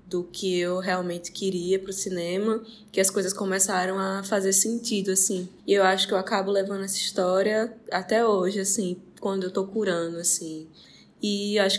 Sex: female